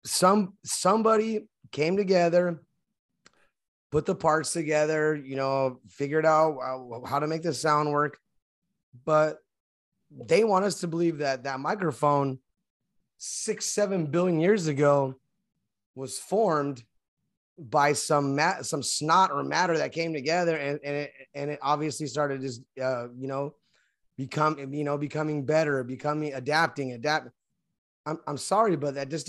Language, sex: English, male